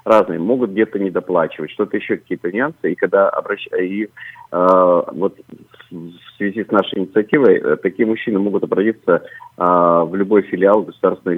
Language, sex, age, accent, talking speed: Russian, male, 40-59, native, 160 wpm